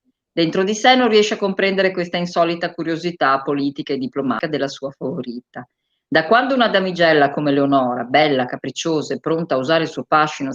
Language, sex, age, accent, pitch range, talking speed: Italian, female, 40-59, native, 145-205 Hz, 175 wpm